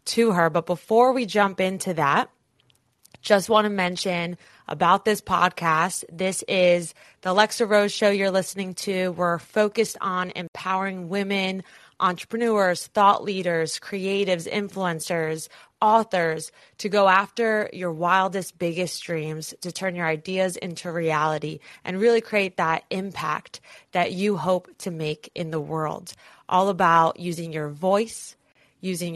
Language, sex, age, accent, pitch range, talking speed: English, female, 20-39, American, 165-200 Hz, 140 wpm